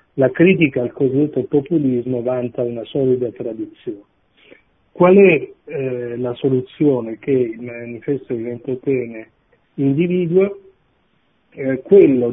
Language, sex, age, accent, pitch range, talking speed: Italian, male, 50-69, native, 120-160 Hz, 105 wpm